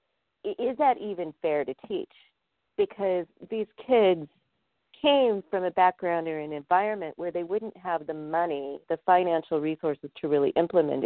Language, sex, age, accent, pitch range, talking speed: English, female, 40-59, American, 150-195 Hz, 150 wpm